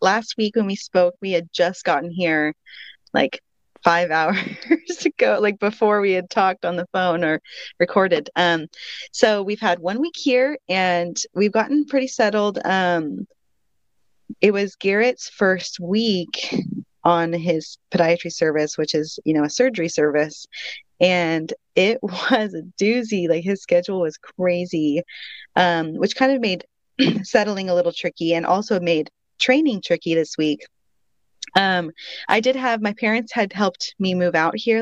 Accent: American